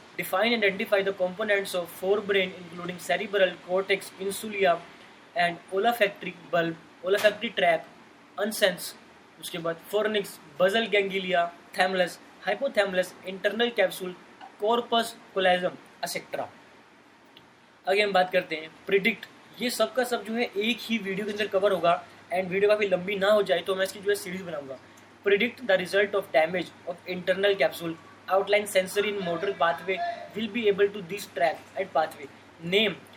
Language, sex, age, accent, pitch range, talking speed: Hindi, male, 20-39, native, 175-205 Hz, 145 wpm